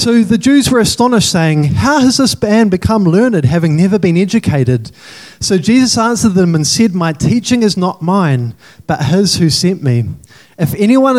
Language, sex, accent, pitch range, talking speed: English, male, Australian, 140-205 Hz, 180 wpm